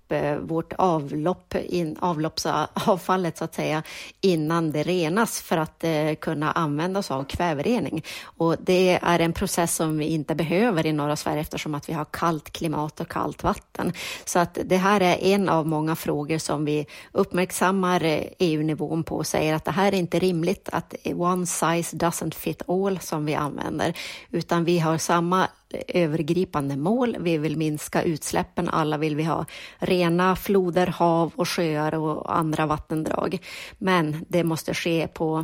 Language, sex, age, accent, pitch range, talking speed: Swedish, female, 30-49, native, 155-180 Hz, 155 wpm